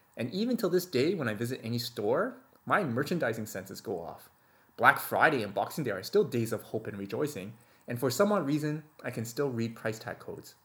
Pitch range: 115-160 Hz